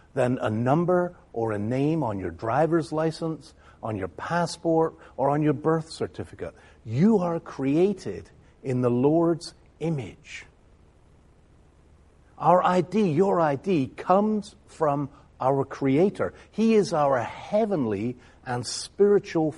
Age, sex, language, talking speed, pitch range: 50-69, male, English, 120 wpm, 110-165 Hz